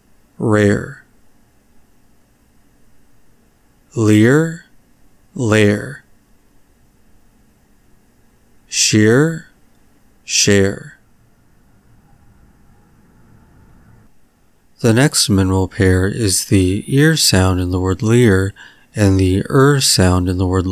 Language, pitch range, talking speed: English, 95-125 Hz, 70 wpm